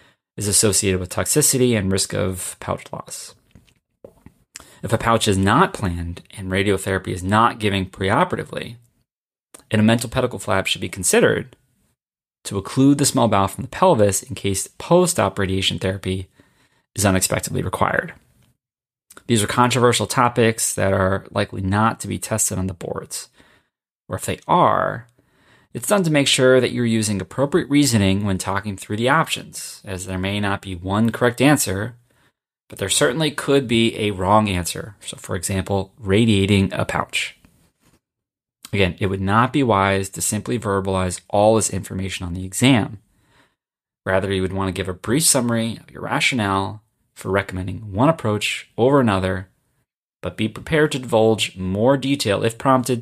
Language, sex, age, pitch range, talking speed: English, male, 30-49, 95-120 Hz, 160 wpm